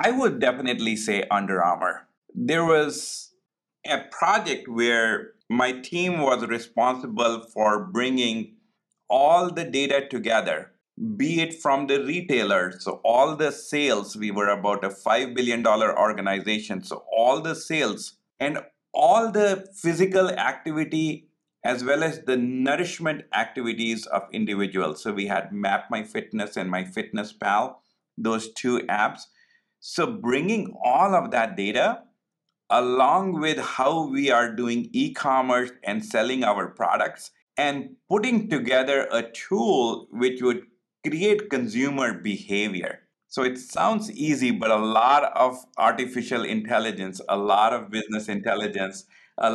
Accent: Indian